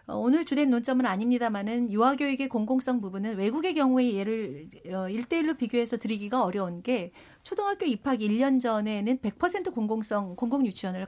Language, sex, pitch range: Korean, female, 210-265 Hz